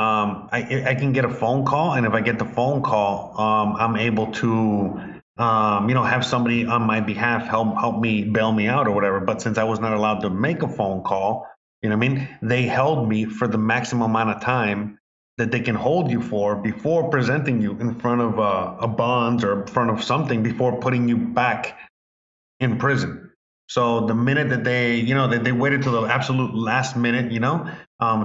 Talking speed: 220 wpm